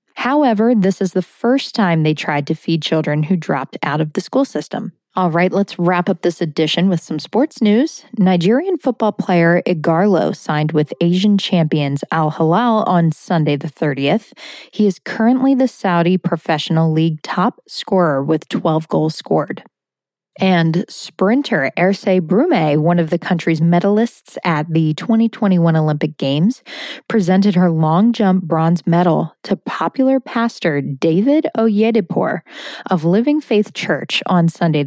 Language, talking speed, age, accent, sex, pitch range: English, 150 wpm, 20-39, American, female, 165-220 Hz